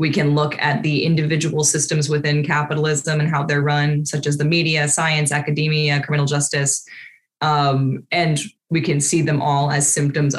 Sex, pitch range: female, 145-180 Hz